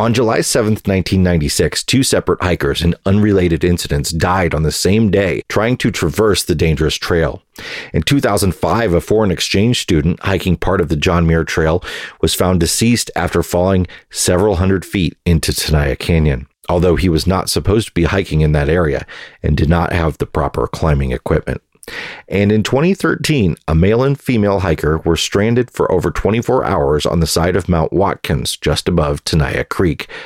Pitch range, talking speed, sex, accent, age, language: 80-105 Hz, 175 wpm, male, American, 40-59, English